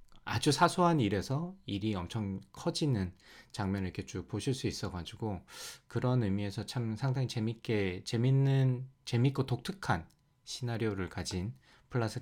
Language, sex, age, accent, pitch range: Korean, male, 20-39, native, 90-125 Hz